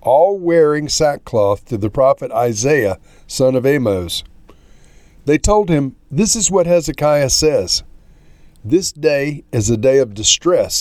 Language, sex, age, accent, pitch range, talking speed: English, male, 50-69, American, 115-160 Hz, 135 wpm